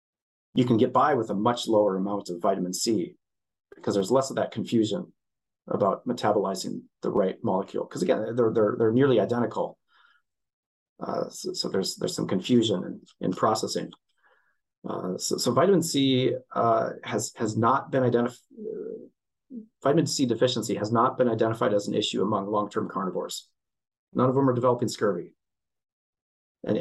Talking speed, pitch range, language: 160 wpm, 115-140 Hz, English